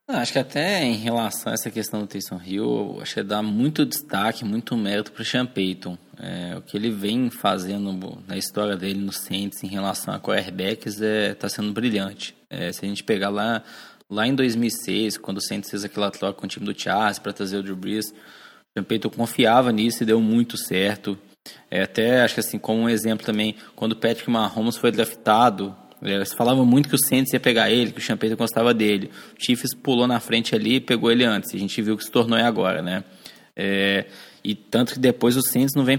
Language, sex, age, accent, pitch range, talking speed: Portuguese, male, 20-39, Brazilian, 100-125 Hz, 220 wpm